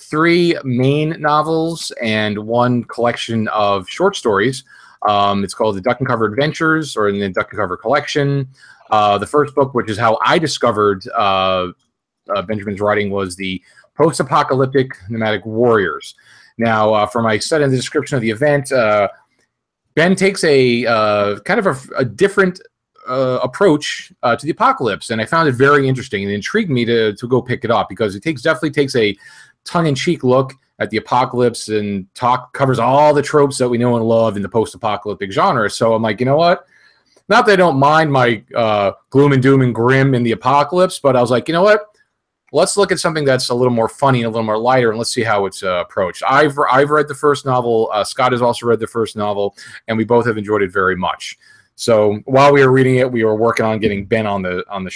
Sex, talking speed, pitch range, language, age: male, 215 wpm, 110-145 Hz, English, 30-49